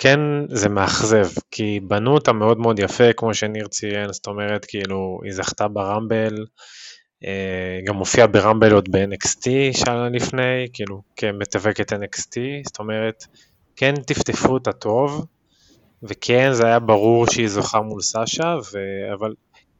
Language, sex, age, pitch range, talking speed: Hebrew, male, 20-39, 100-125 Hz, 135 wpm